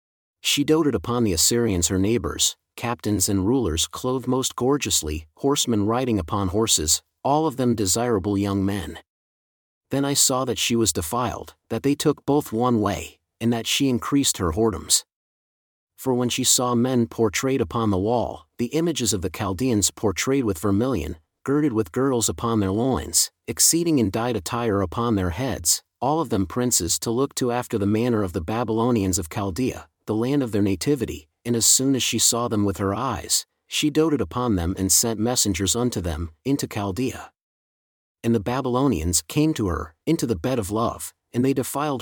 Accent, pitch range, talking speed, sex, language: American, 95-130 Hz, 180 wpm, male, English